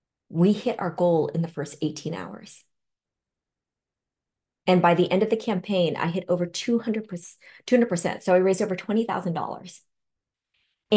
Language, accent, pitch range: English, American, 165-215 Hz